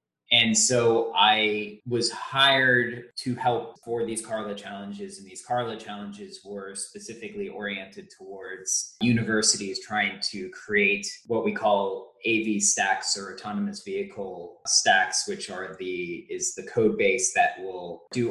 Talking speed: 140 wpm